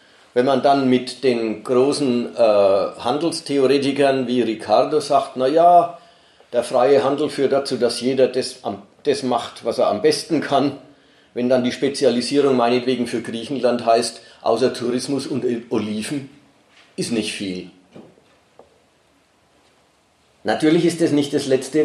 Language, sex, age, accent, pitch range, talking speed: German, male, 40-59, German, 125-165 Hz, 125 wpm